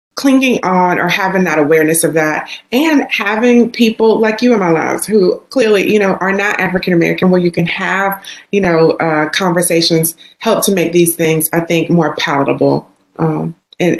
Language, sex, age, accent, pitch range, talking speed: English, female, 30-49, American, 160-195 Hz, 180 wpm